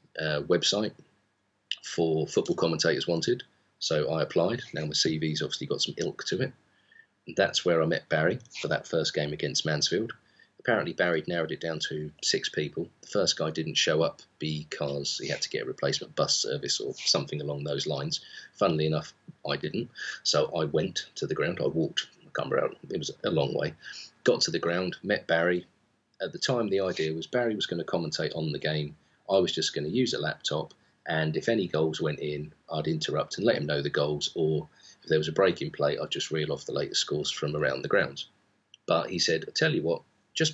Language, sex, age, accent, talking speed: English, male, 40-59, British, 215 wpm